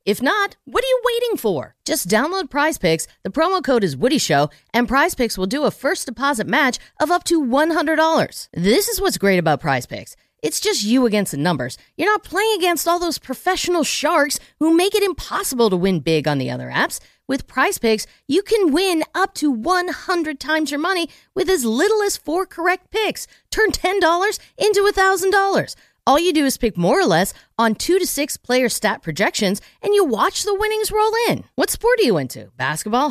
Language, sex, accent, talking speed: English, female, American, 205 wpm